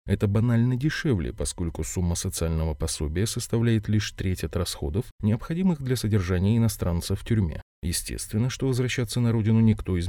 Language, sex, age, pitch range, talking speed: Russian, male, 30-49, 90-120 Hz, 150 wpm